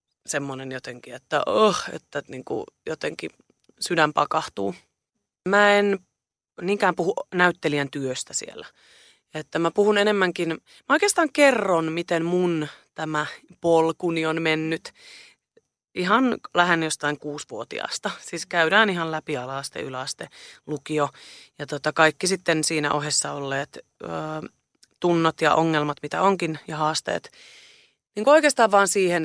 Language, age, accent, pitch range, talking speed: Finnish, 30-49, native, 150-210 Hz, 125 wpm